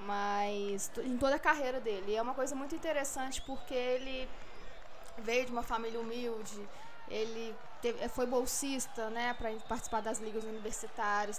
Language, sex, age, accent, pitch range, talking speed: Portuguese, female, 20-39, Brazilian, 225-285 Hz, 155 wpm